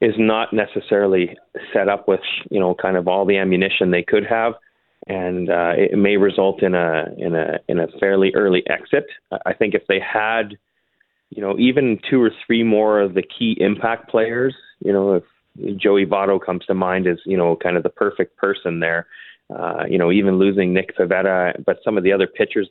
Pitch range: 95-120 Hz